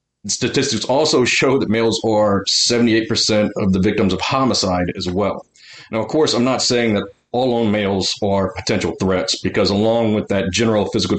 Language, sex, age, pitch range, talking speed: English, male, 40-59, 95-115 Hz, 175 wpm